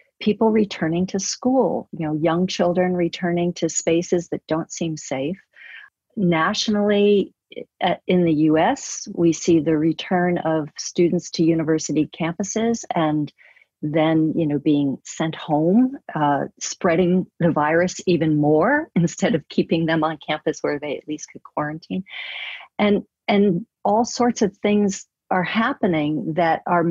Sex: female